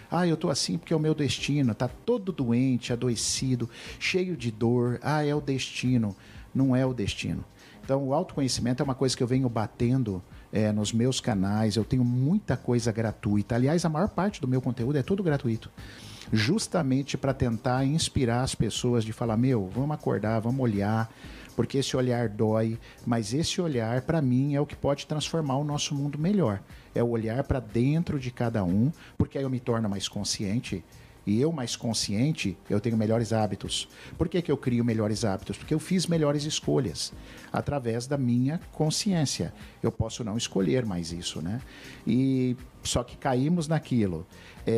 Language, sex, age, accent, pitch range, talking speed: Portuguese, male, 50-69, Brazilian, 110-140 Hz, 180 wpm